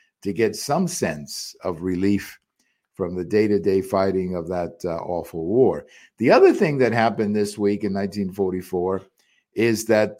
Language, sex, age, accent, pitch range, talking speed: English, male, 50-69, American, 95-115 Hz, 155 wpm